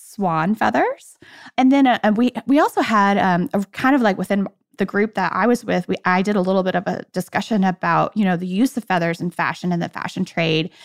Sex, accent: female, American